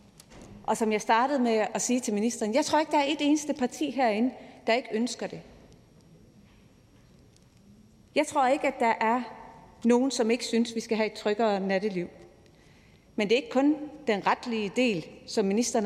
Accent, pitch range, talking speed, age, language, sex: native, 205-250 Hz, 180 wpm, 30-49, Danish, female